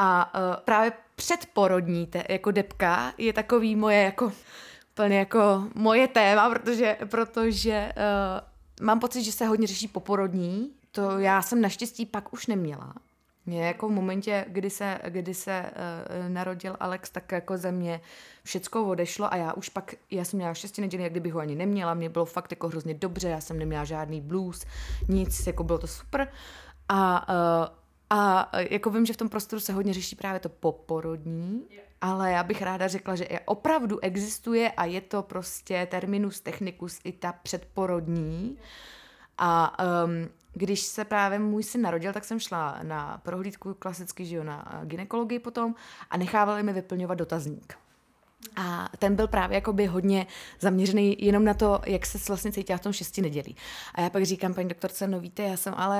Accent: native